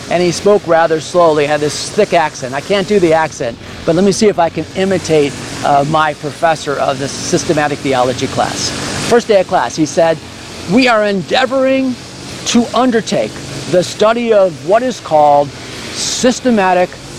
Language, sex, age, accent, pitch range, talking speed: English, male, 50-69, American, 150-210 Hz, 170 wpm